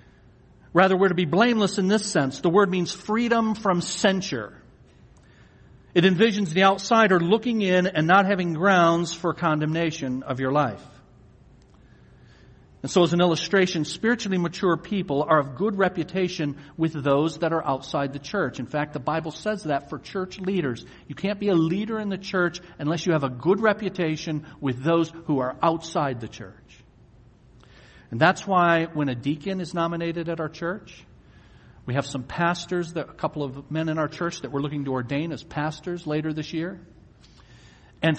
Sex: male